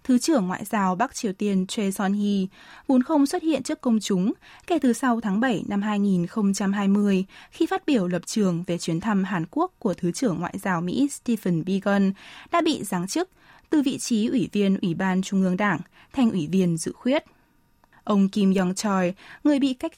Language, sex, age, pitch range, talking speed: Vietnamese, female, 10-29, 185-255 Hz, 200 wpm